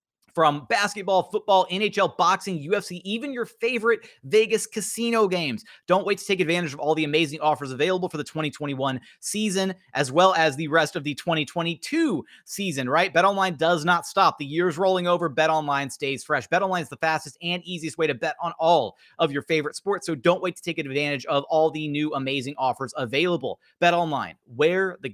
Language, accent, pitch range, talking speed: English, American, 145-175 Hz, 190 wpm